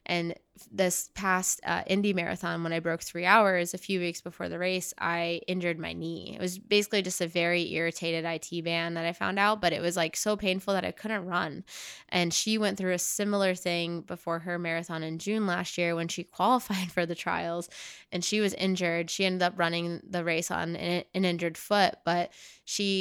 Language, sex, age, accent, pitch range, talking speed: English, female, 20-39, American, 170-195 Hz, 210 wpm